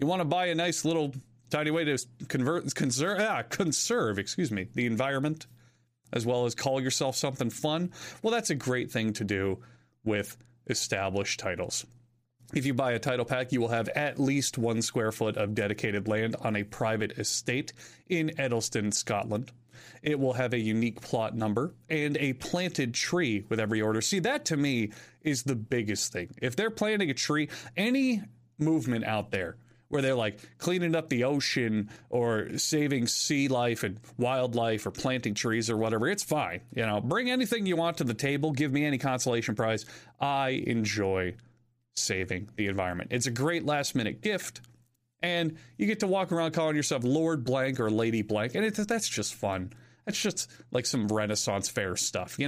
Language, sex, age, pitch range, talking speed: English, male, 30-49, 110-145 Hz, 185 wpm